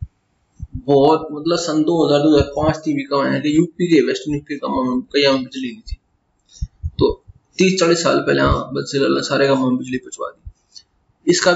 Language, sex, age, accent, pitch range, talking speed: Hindi, male, 20-39, native, 130-155 Hz, 185 wpm